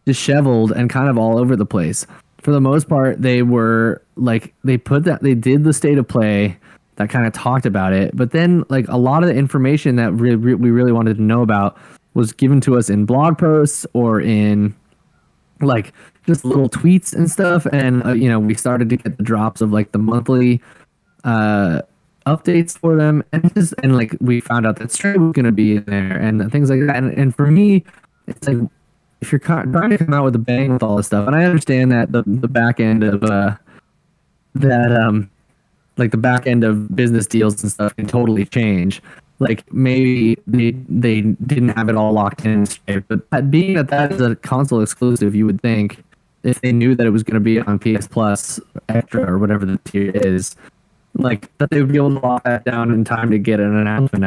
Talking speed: 220 wpm